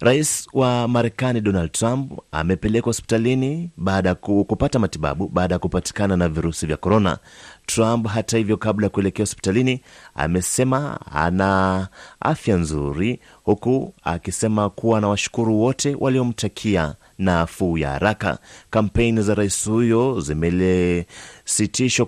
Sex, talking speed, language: male, 120 wpm, Swahili